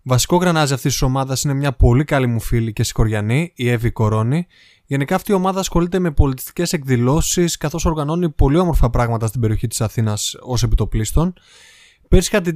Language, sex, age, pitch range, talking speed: Greek, male, 20-39, 130-180 Hz, 180 wpm